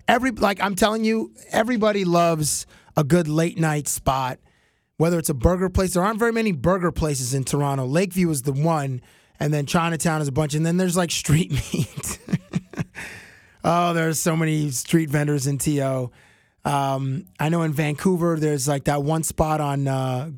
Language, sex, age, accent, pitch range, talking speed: English, male, 20-39, American, 145-185 Hz, 180 wpm